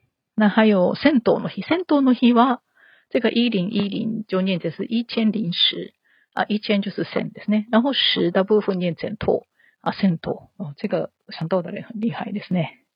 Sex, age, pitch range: female, 40-59, 185-225 Hz